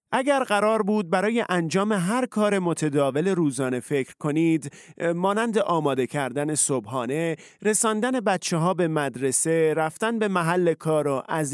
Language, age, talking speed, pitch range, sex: Persian, 40-59, 135 wpm, 145-210 Hz, male